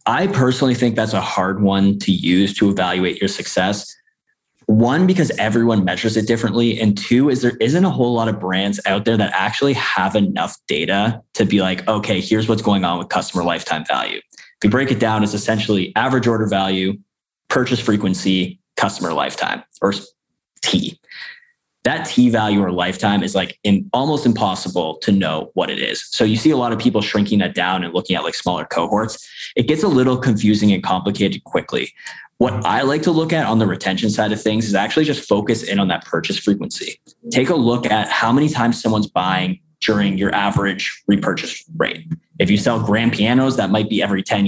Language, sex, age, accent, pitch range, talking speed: English, male, 20-39, American, 100-120 Hz, 200 wpm